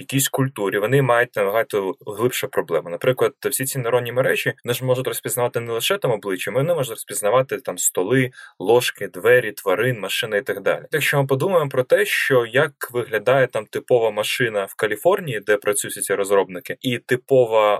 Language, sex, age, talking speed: Ukrainian, male, 20-39, 170 wpm